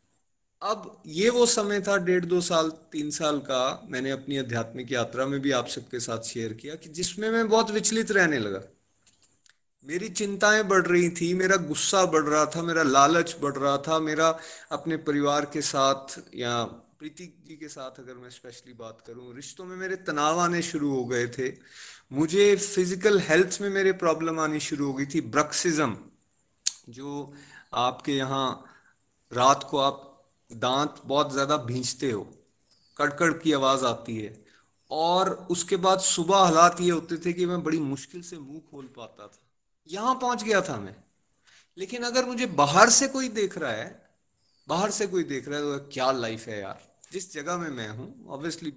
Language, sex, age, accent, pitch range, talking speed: Hindi, male, 30-49, native, 135-190 Hz, 175 wpm